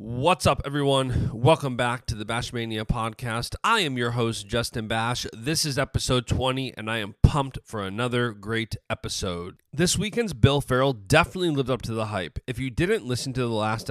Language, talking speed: English, 190 wpm